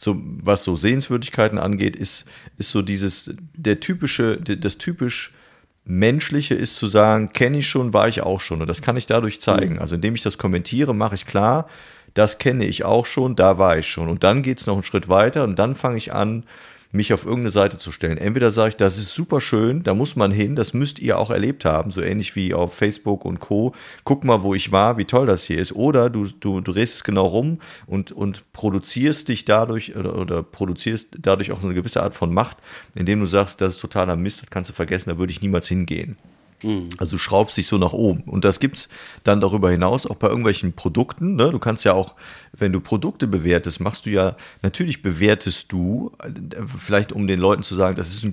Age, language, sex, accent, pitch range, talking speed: 40-59, German, male, German, 95-115 Hz, 225 wpm